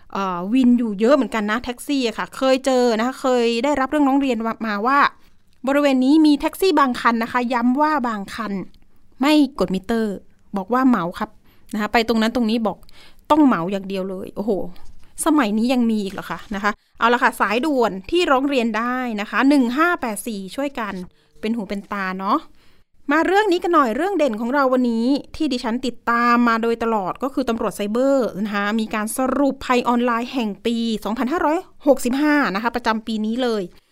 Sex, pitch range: female, 210-270 Hz